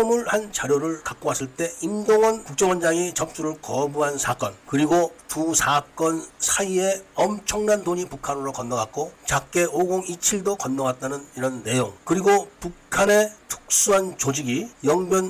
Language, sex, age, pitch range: Korean, male, 40-59, 140-185 Hz